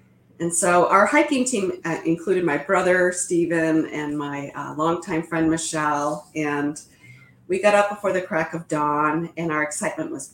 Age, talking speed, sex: 40-59, 170 wpm, female